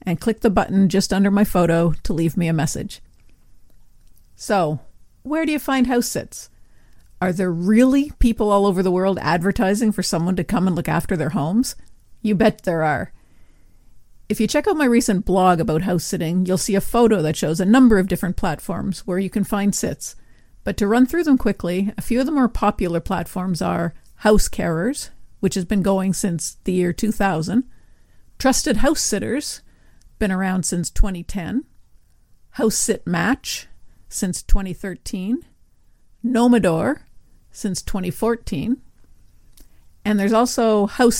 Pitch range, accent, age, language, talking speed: 180-225 Hz, American, 50-69, English, 160 wpm